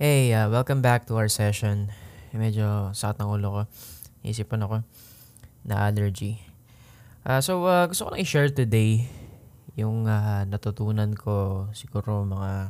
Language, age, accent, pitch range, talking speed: Filipino, 20-39, native, 105-120 Hz, 140 wpm